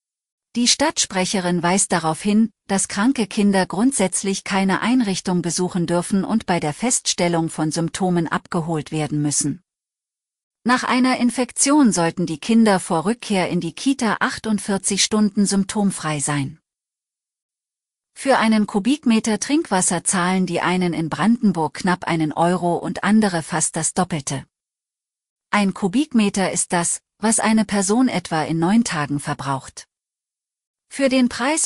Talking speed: 130 wpm